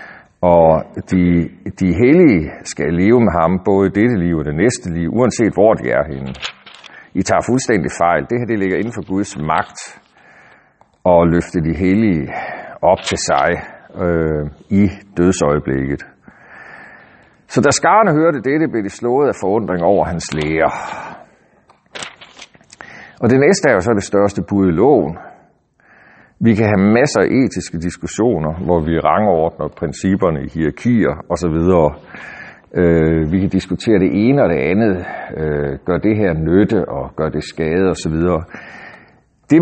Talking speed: 150 wpm